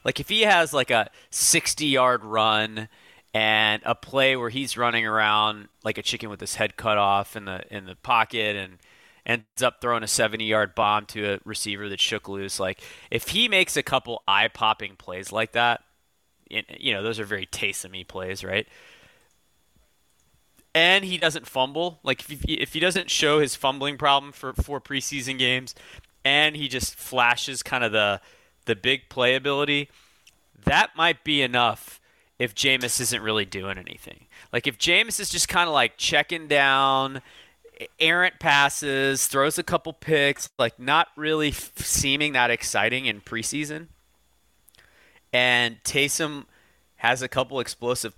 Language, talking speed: English, 160 wpm